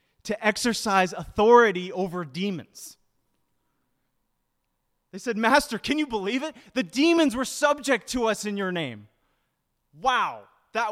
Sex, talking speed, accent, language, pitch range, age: male, 125 wpm, American, English, 160-235 Hz, 20-39